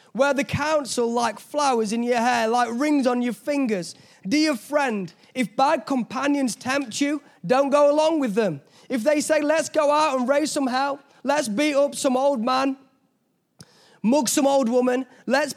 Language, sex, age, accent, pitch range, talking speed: English, male, 20-39, British, 235-290 Hz, 175 wpm